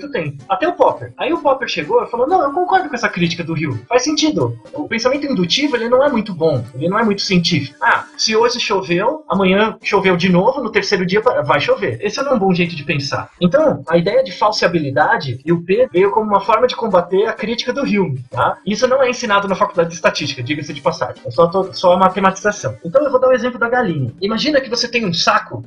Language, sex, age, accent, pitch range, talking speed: Portuguese, male, 20-39, Brazilian, 170-260 Hz, 245 wpm